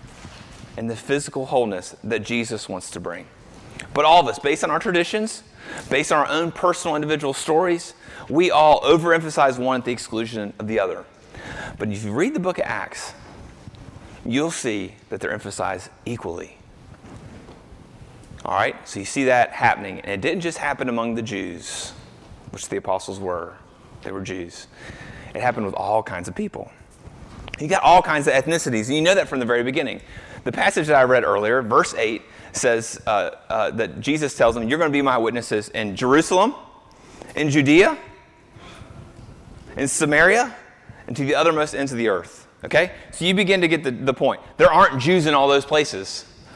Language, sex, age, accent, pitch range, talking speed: English, male, 30-49, American, 115-160 Hz, 185 wpm